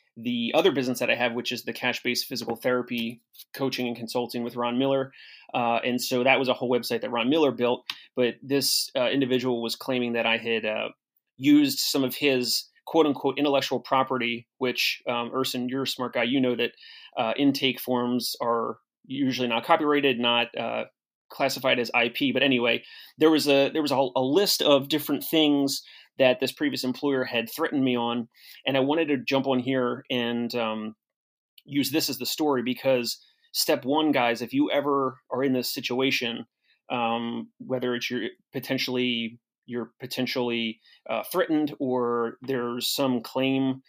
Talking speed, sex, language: 175 wpm, male, English